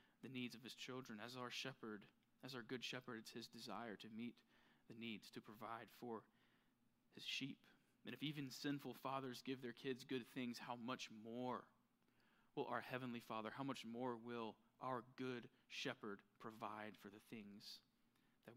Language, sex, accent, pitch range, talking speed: English, male, American, 120-200 Hz, 170 wpm